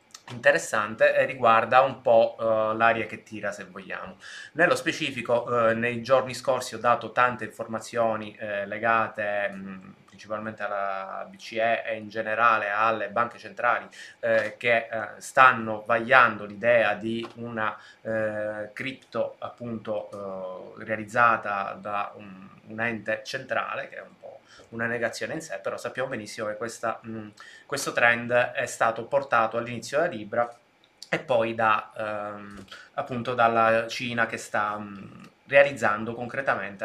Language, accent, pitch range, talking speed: Italian, native, 110-130 Hz, 120 wpm